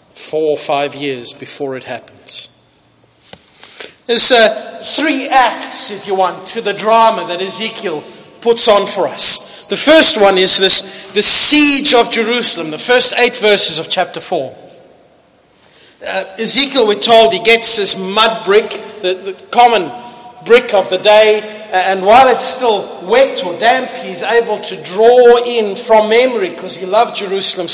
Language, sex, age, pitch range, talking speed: English, male, 50-69, 205-255 Hz, 160 wpm